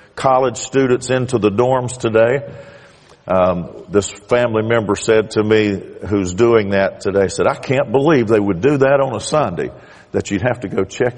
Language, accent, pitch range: English, American, 95-115 Hz